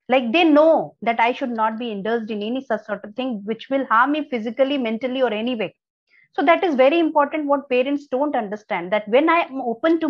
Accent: Indian